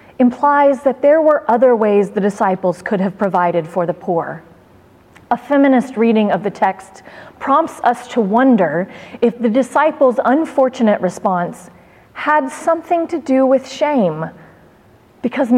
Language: English